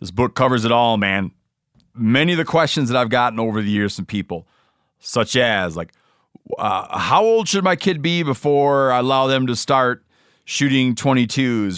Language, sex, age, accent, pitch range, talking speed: English, male, 30-49, American, 110-145 Hz, 190 wpm